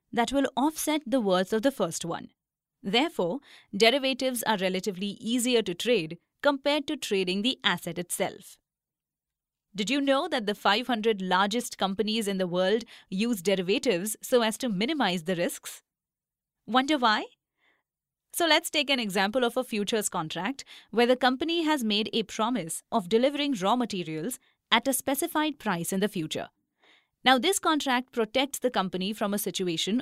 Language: English